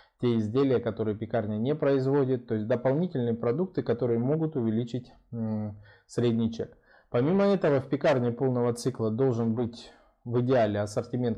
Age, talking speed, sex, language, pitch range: 20-39, 135 wpm, male, Russian, 110-130 Hz